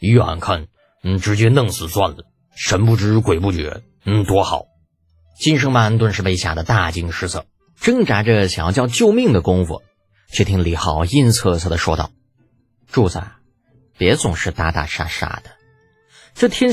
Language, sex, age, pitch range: Chinese, male, 30-49, 90-130 Hz